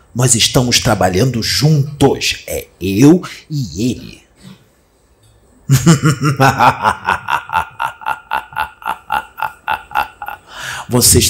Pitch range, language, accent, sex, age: 75-110 Hz, Portuguese, Brazilian, male, 50-69